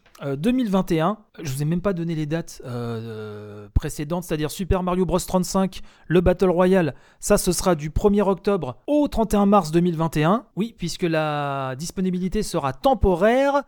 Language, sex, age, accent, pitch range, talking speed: French, male, 40-59, French, 175-235 Hz, 160 wpm